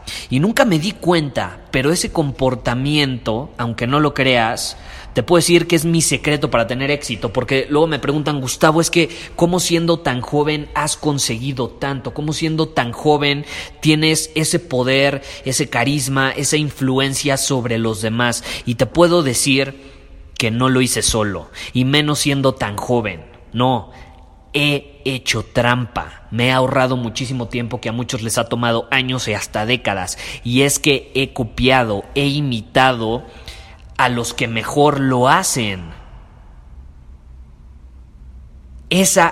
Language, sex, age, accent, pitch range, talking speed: Spanish, male, 30-49, Mexican, 115-145 Hz, 150 wpm